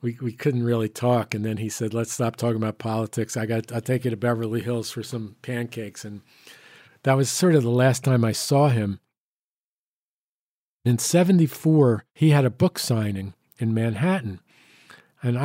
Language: English